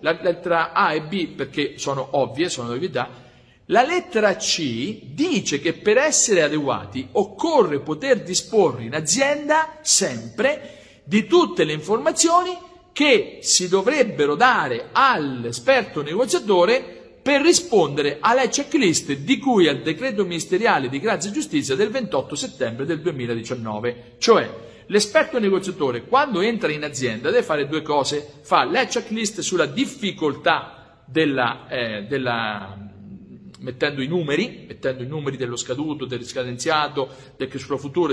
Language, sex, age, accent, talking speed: Italian, male, 50-69, native, 130 wpm